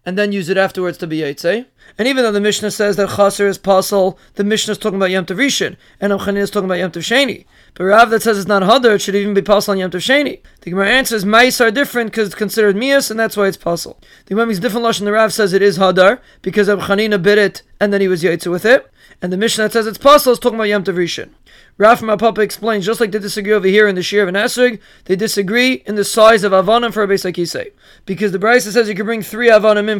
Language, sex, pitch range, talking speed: English, male, 195-230 Hz, 250 wpm